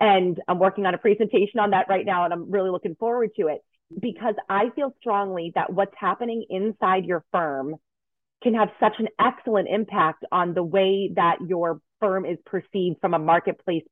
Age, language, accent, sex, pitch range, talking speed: 30-49, English, American, female, 175-220 Hz, 190 wpm